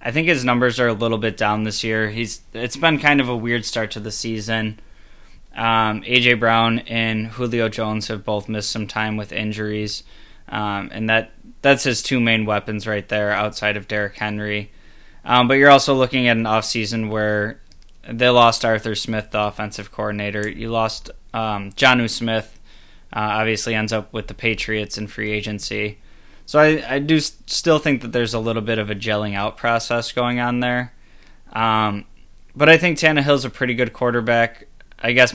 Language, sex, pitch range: English, male, 105-120 Hz